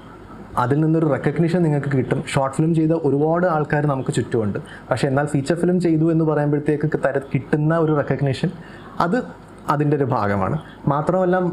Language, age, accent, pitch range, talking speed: Malayalam, 20-39, native, 140-175 Hz, 145 wpm